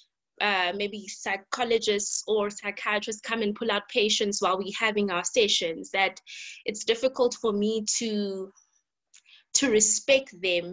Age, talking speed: 20-39, 135 wpm